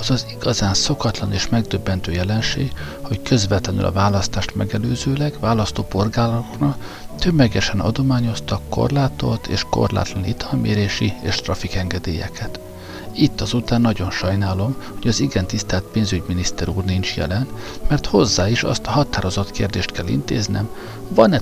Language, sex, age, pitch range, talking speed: Hungarian, male, 50-69, 95-120 Hz, 120 wpm